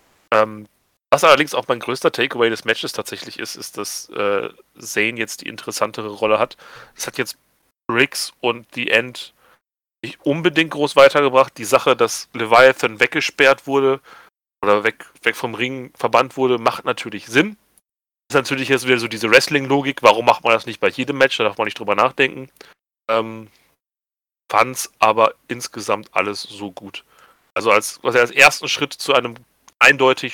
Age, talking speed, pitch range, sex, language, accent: 40-59, 170 wpm, 115-135 Hz, male, German, German